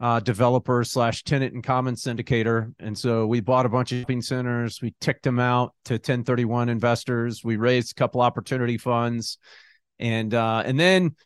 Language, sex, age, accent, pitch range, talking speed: English, male, 40-59, American, 120-150 Hz, 175 wpm